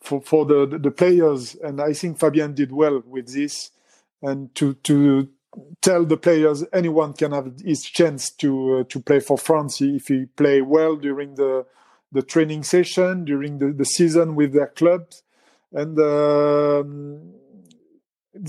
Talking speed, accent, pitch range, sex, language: 155 wpm, French, 140-160 Hz, male, English